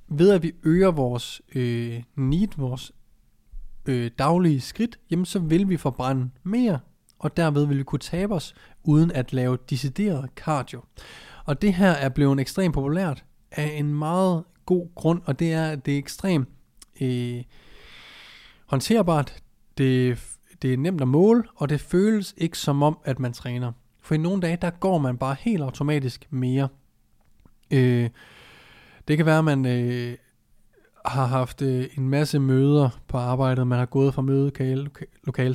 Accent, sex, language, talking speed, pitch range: native, male, Danish, 175 wpm, 125-150 Hz